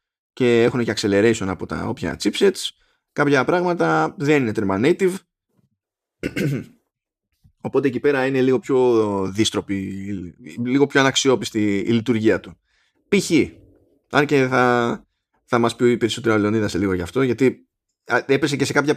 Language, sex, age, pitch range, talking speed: Greek, male, 20-39, 115-150 Hz, 145 wpm